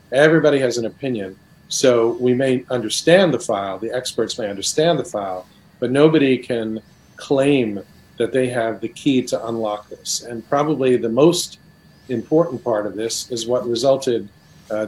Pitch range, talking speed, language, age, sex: 115-130 Hz, 160 wpm, Hebrew, 40-59, male